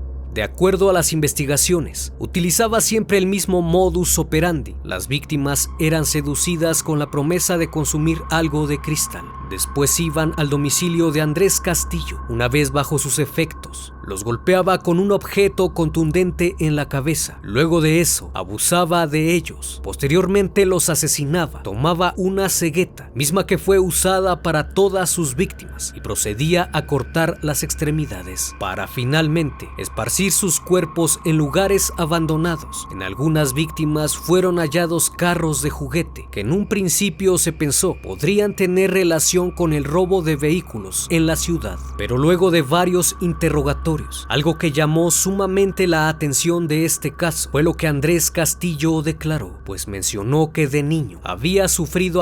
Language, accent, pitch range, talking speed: Spanish, Mexican, 150-180 Hz, 150 wpm